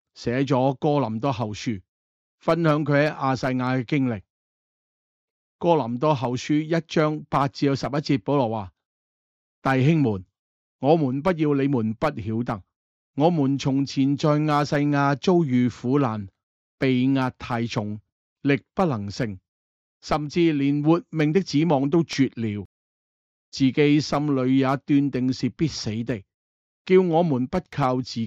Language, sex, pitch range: Chinese, male, 115-150 Hz